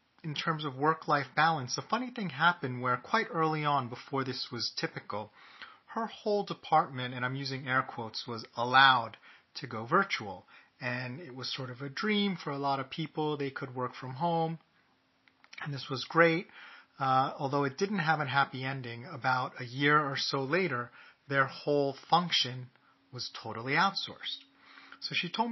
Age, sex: 30-49, male